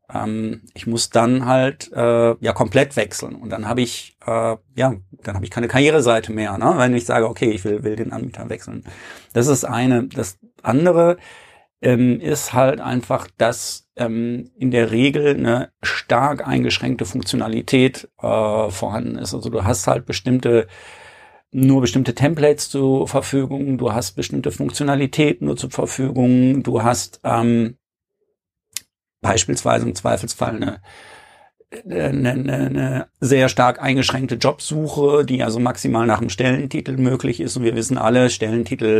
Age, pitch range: 50-69, 110-130 Hz